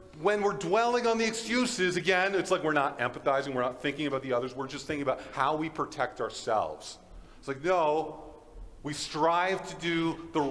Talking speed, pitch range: 195 wpm, 105-155 Hz